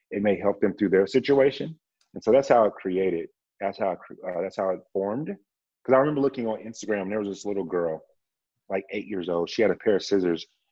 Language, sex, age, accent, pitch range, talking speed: English, male, 30-49, American, 90-110 Hz, 235 wpm